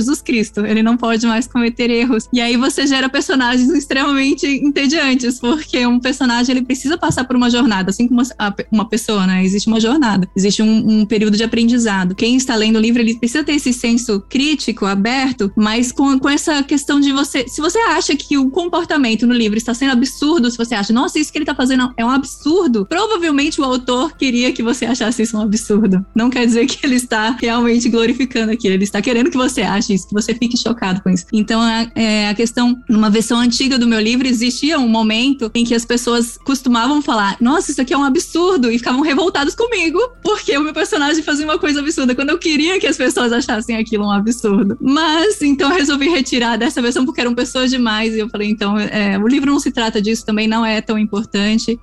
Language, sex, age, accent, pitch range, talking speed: Portuguese, female, 20-39, Brazilian, 220-275 Hz, 215 wpm